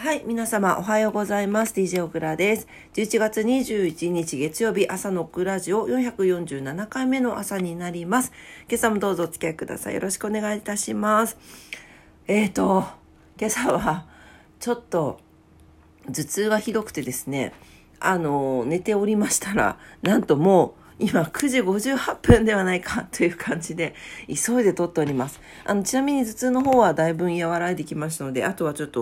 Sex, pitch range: female, 155-225 Hz